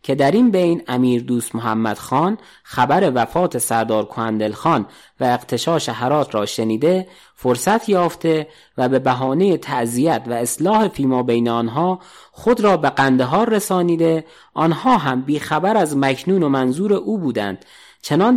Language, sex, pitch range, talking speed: English, male, 115-185 Hz, 145 wpm